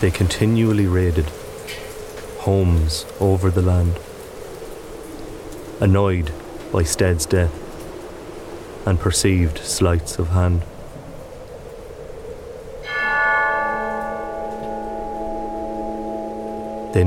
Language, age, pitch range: English, 30-49, 90-110 Hz